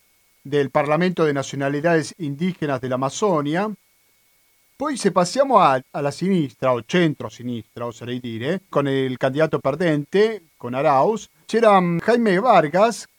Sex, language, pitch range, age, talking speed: male, Italian, 140-200 Hz, 40-59, 125 wpm